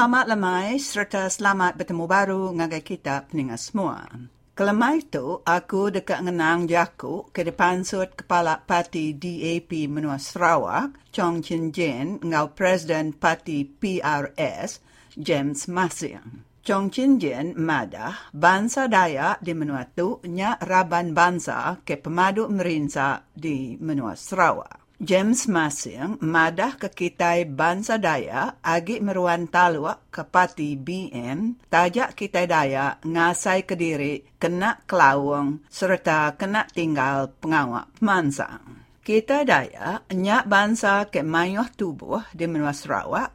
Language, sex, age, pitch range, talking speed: English, female, 50-69, 150-190 Hz, 115 wpm